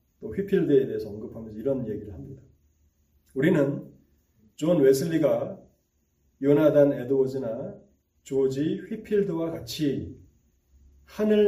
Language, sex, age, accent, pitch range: Korean, male, 40-59, native, 130-205 Hz